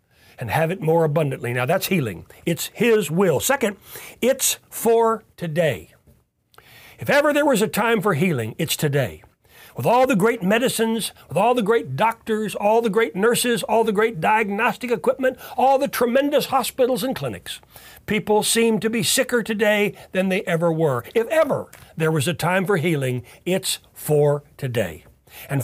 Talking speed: 170 wpm